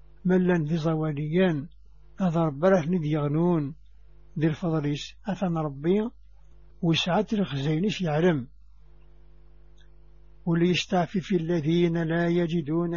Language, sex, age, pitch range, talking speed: English, male, 60-79, 155-180 Hz, 65 wpm